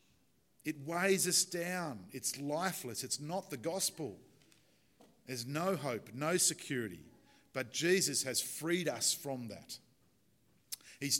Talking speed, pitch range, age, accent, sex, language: 125 wpm, 120-165 Hz, 40-59, Australian, male, English